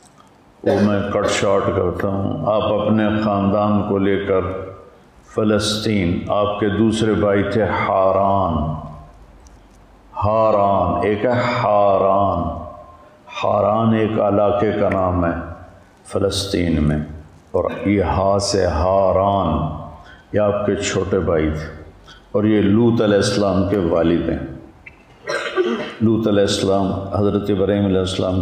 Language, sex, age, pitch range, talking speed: Urdu, male, 50-69, 90-105 Hz, 120 wpm